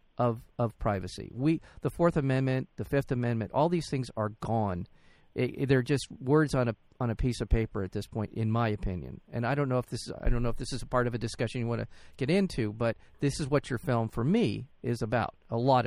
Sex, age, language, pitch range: male, 50-69, English, 115-135 Hz